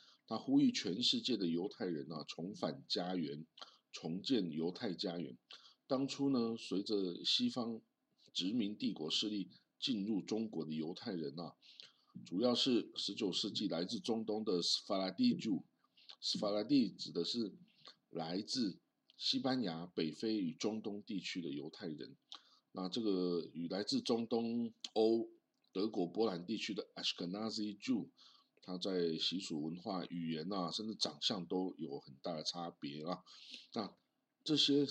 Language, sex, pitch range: Chinese, male, 85-130 Hz